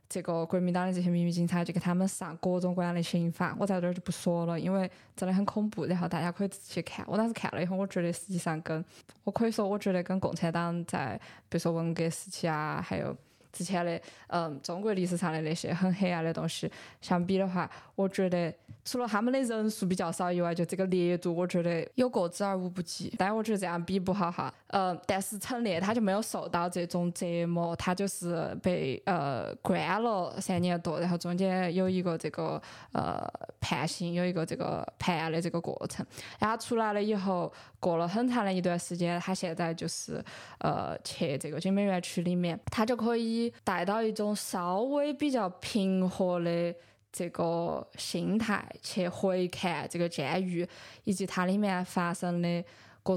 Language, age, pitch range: Chinese, 20-39, 170-195 Hz